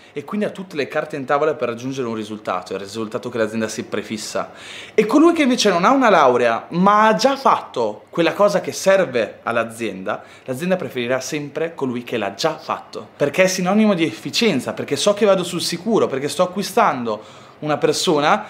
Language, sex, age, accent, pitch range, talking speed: Italian, male, 30-49, native, 145-210 Hz, 190 wpm